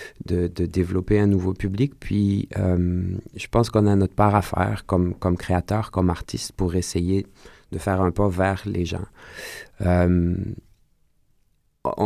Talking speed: 155 wpm